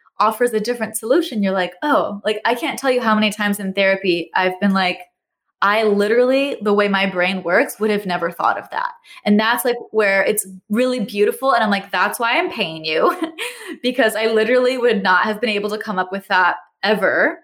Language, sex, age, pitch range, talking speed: English, female, 20-39, 195-245 Hz, 215 wpm